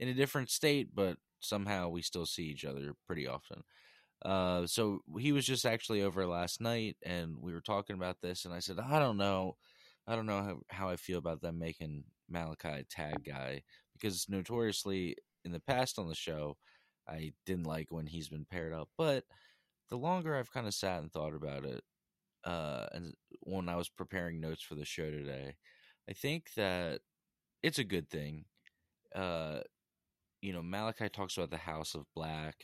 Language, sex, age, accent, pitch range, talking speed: English, male, 20-39, American, 80-100 Hz, 190 wpm